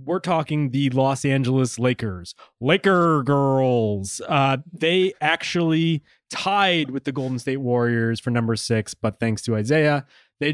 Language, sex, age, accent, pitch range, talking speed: English, male, 20-39, American, 115-145 Hz, 140 wpm